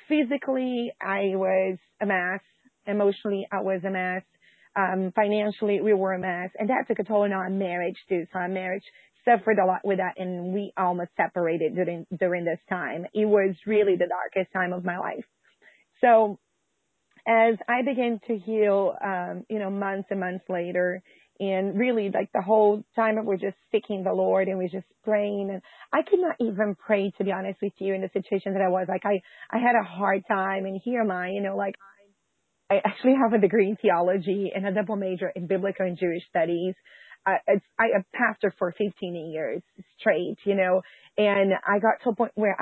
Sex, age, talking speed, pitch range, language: female, 30-49, 205 wpm, 185-215 Hz, English